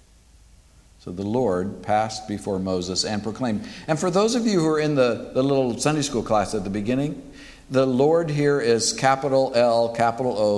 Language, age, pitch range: English, 60-79, 100-140 Hz